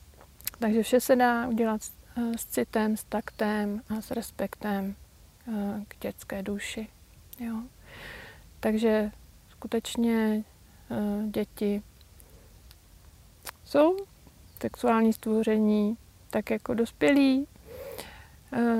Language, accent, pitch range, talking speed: Czech, native, 215-245 Hz, 80 wpm